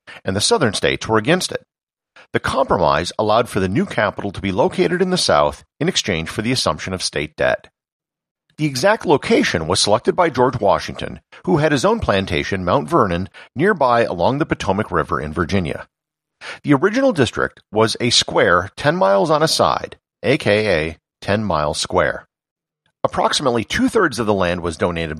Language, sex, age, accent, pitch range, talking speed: English, male, 50-69, American, 85-125 Hz, 170 wpm